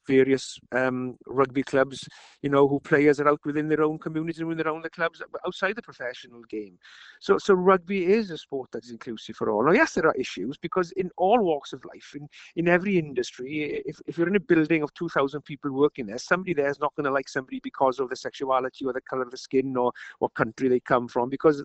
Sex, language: male, English